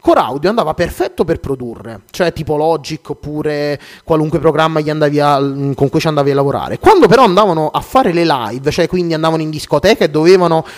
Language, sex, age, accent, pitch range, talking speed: Italian, male, 30-49, native, 145-185 Hz, 190 wpm